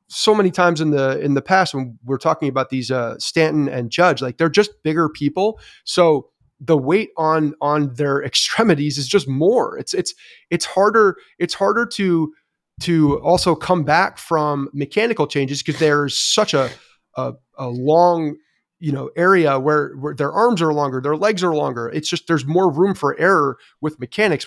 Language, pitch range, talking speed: English, 140-185 Hz, 185 wpm